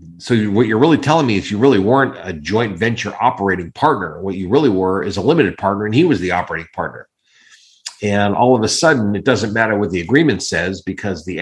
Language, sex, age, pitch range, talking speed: English, male, 50-69, 95-110 Hz, 225 wpm